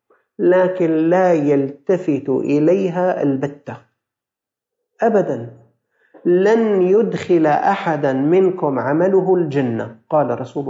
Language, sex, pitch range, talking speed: Arabic, male, 175-235 Hz, 80 wpm